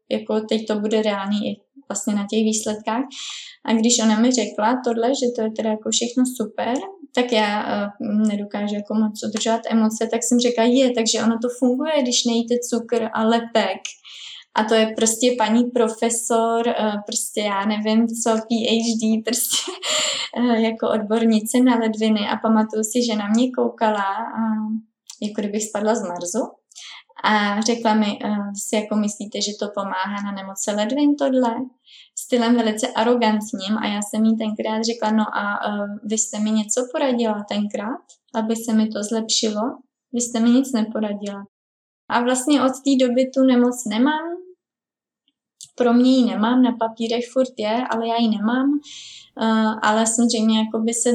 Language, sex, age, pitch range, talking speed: Czech, female, 20-39, 215-245 Hz, 160 wpm